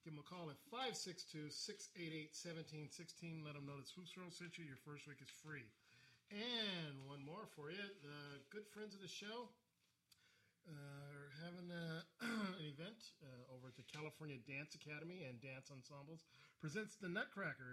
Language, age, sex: English, 40-59, male